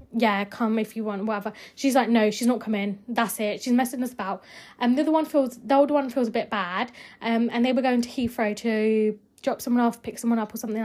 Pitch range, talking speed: 215-255 Hz, 255 wpm